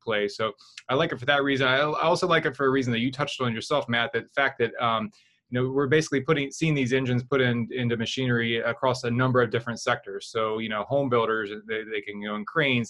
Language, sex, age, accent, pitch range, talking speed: English, male, 20-39, American, 110-130 Hz, 250 wpm